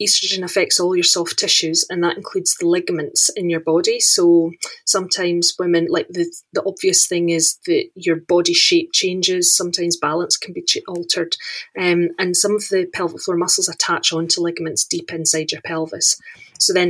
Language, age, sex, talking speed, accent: English, 30-49, female, 180 wpm, British